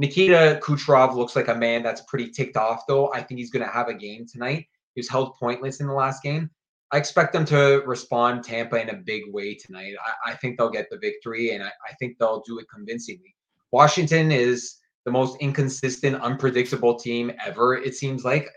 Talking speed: 210 wpm